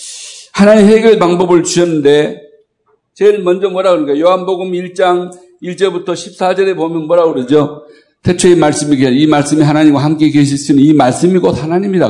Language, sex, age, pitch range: Korean, male, 60-79, 155-215 Hz